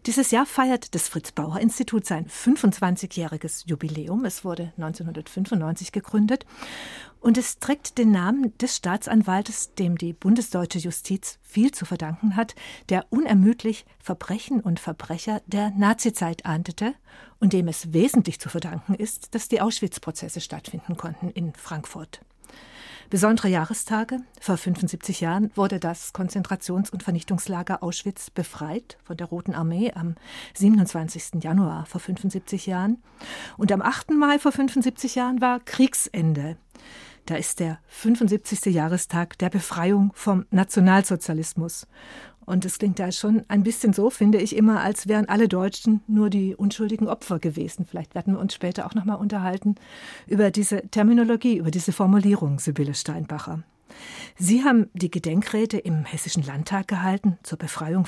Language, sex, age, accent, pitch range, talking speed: German, female, 50-69, German, 175-225 Hz, 140 wpm